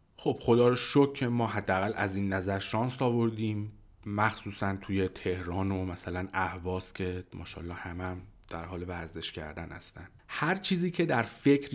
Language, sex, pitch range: Persian, male, 100-125 Hz